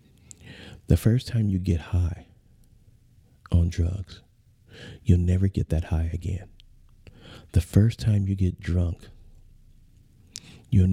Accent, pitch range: American, 85-100 Hz